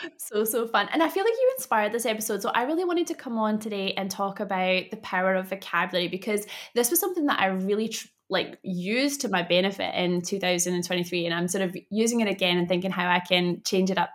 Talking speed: 235 wpm